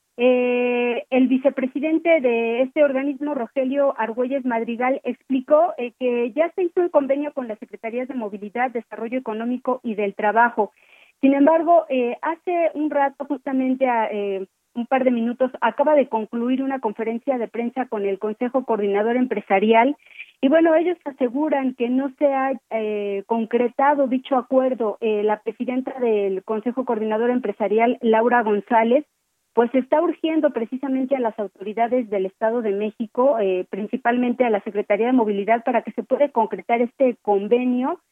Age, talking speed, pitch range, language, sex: 40-59, 155 wpm, 225-270 Hz, Spanish, female